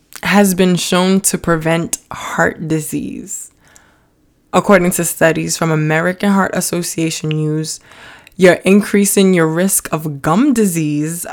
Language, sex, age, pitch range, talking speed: English, female, 20-39, 160-190 Hz, 115 wpm